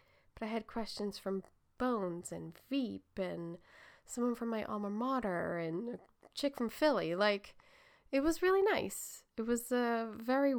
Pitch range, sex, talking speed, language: 190-255 Hz, female, 155 wpm, English